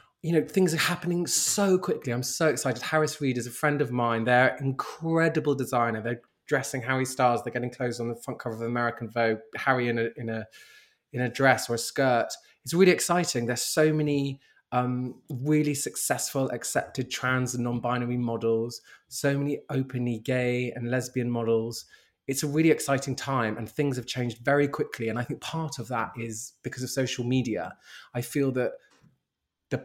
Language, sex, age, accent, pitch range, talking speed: English, male, 20-39, British, 120-150 Hz, 185 wpm